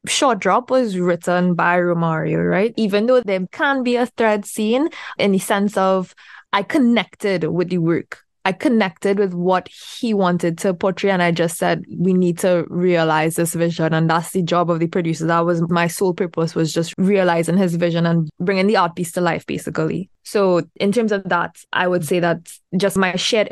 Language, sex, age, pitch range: English, female, 20-39, 175-200 Hz